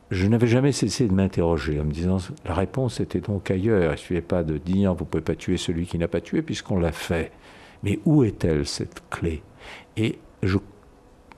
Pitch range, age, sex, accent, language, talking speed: 85-105 Hz, 60-79, male, French, French, 210 wpm